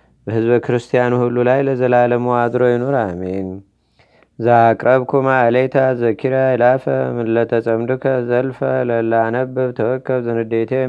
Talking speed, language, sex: 110 wpm, Amharic, male